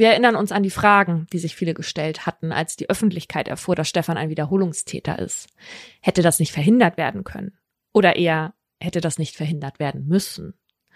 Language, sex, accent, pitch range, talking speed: German, female, German, 175-220 Hz, 185 wpm